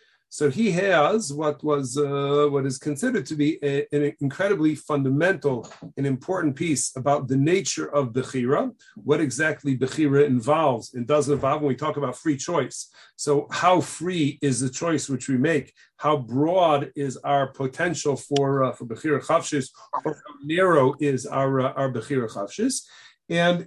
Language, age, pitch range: English, 40-59, 140-170 Hz